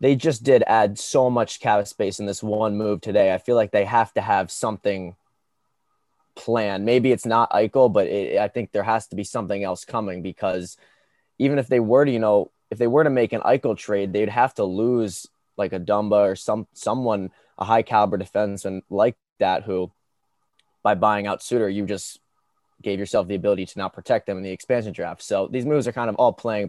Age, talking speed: 20-39, 215 wpm